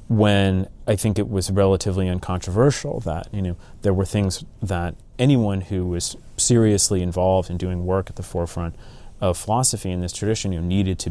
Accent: American